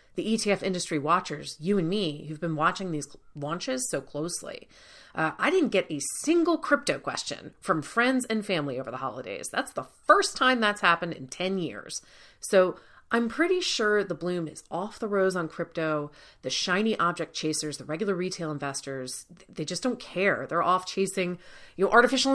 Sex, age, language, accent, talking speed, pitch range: female, 30-49, English, American, 185 wpm, 175-255 Hz